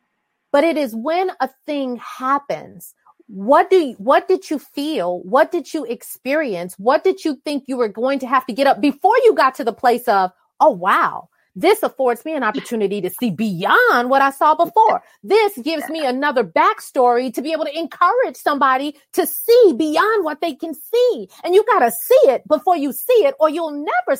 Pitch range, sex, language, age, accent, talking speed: 225-310 Hz, female, English, 30-49, American, 205 wpm